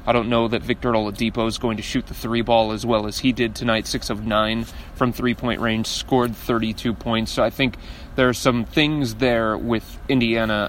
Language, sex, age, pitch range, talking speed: English, male, 30-49, 110-125 Hz, 215 wpm